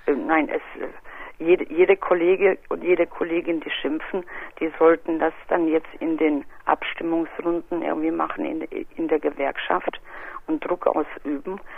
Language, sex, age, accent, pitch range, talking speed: German, female, 50-69, German, 160-200 Hz, 140 wpm